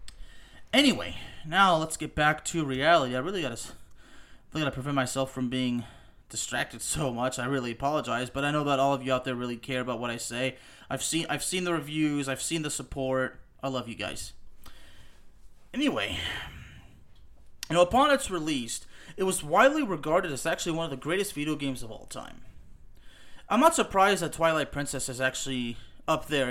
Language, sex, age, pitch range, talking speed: English, male, 30-49, 125-165 Hz, 190 wpm